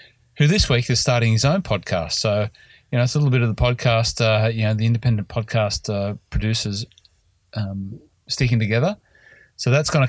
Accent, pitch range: Australian, 100-120 Hz